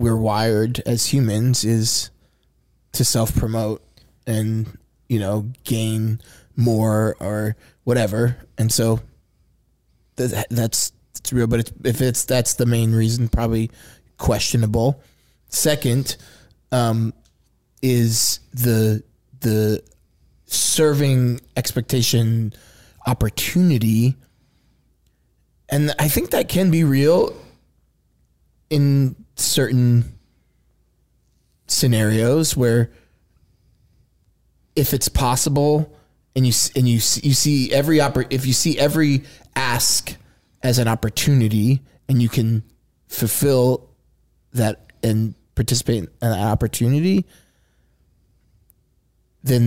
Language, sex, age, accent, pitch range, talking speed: English, male, 20-39, American, 110-130 Hz, 95 wpm